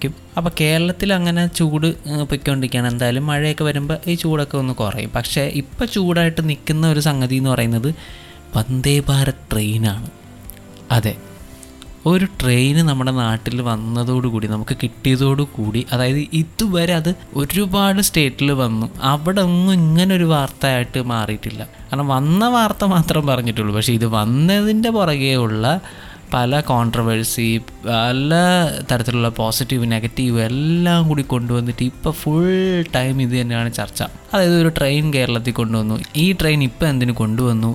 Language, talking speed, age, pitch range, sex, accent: Malayalam, 125 wpm, 20-39, 115-155 Hz, male, native